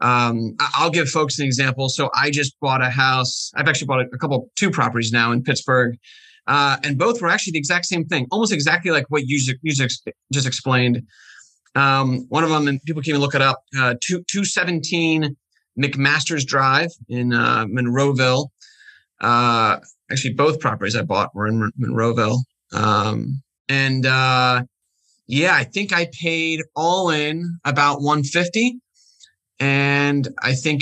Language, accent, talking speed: English, American, 160 wpm